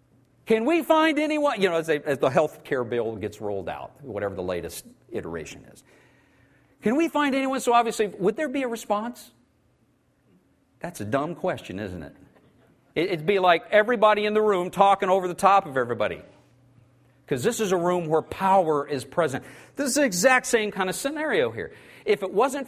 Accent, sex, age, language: American, male, 50-69, English